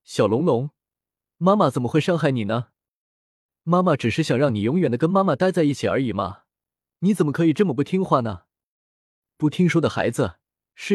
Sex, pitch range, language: male, 120-170 Hz, Chinese